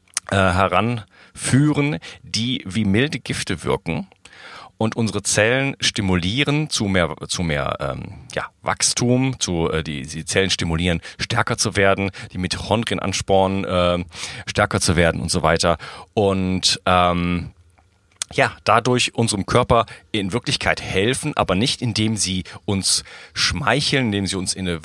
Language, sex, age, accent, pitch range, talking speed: German, male, 40-59, German, 90-115 Hz, 125 wpm